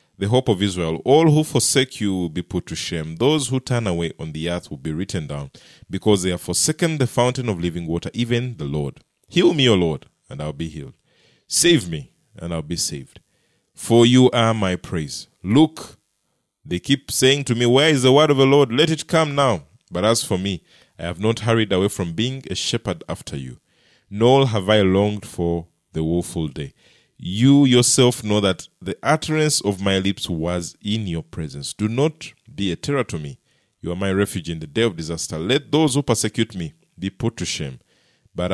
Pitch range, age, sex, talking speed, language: 85-125 Hz, 30-49, male, 210 wpm, English